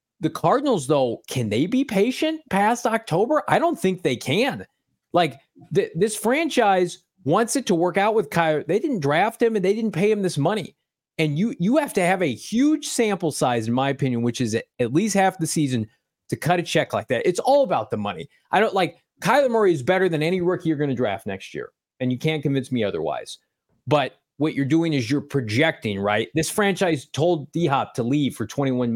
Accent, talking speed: American, 220 wpm